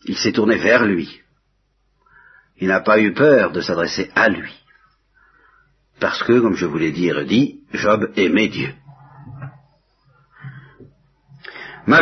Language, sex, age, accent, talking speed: French, male, 60-79, French, 130 wpm